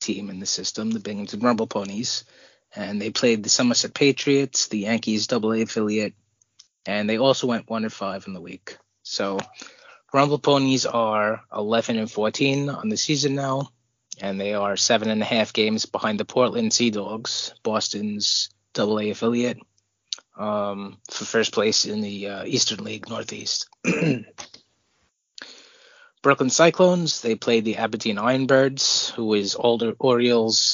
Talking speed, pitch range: 150 wpm, 105-120 Hz